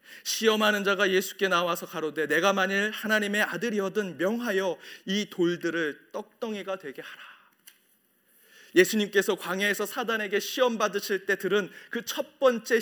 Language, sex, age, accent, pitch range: Korean, male, 30-49, native, 185-230 Hz